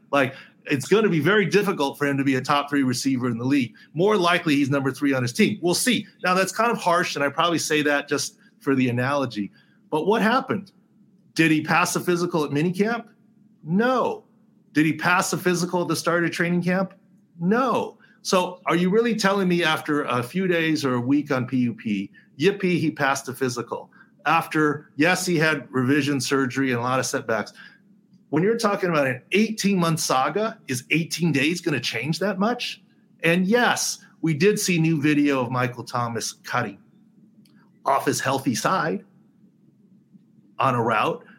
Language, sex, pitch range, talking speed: English, male, 140-200 Hz, 185 wpm